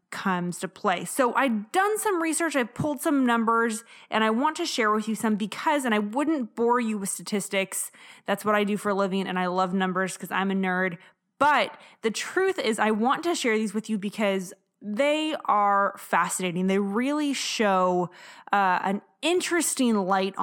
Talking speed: 195 wpm